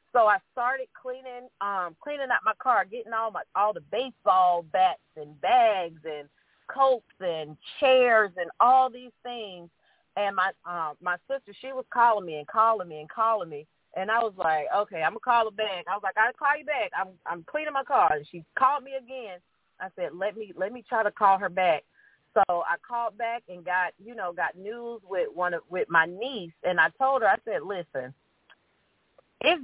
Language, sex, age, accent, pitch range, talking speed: English, female, 40-59, American, 170-230 Hz, 215 wpm